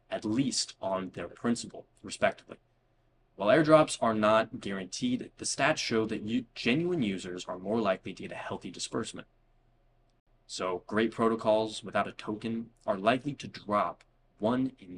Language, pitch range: English, 105-125 Hz